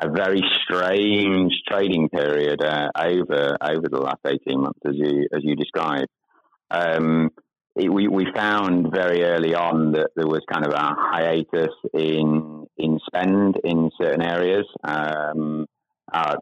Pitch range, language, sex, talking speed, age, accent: 75-90 Hz, English, male, 145 wpm, 30-49, British